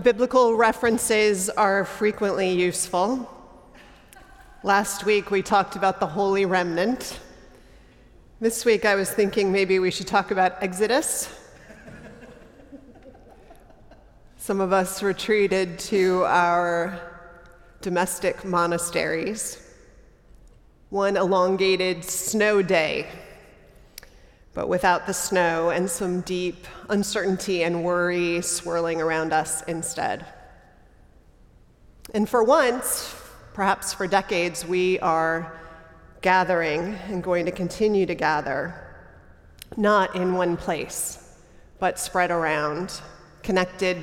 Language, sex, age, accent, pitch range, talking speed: English, female, 30-49, American, 170-200 Hz, 100 wpm